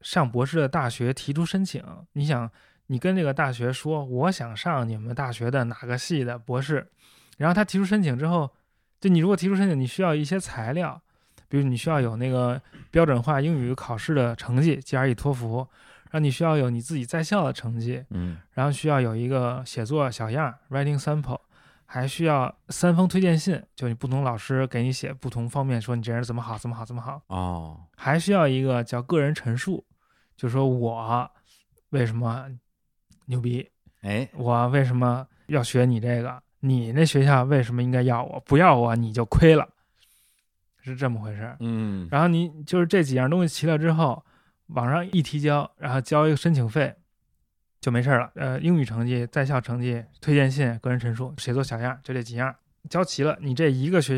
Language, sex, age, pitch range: Chinese, male, 20-39, 120-155 Hz